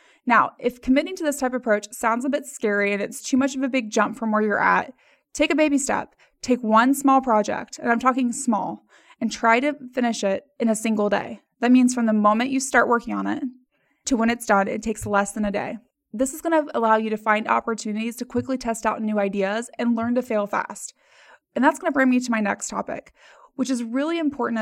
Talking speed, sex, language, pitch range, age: 235 wpm, female, English, 220-275 Hz, 20-39